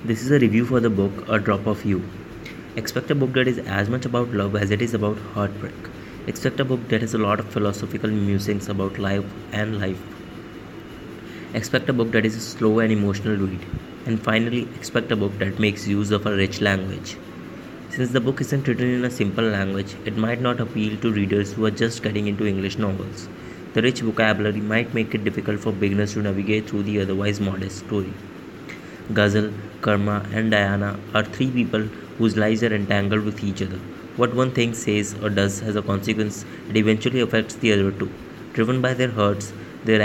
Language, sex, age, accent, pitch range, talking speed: English, male, 20-39, Indian, 100-115 Hz, 200 wpm